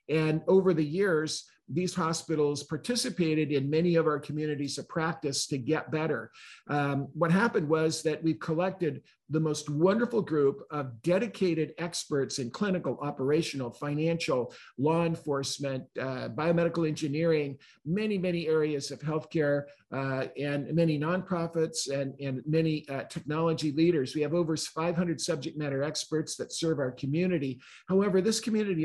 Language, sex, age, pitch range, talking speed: English, male, 50-69, 145-170 Hz, 145 wpm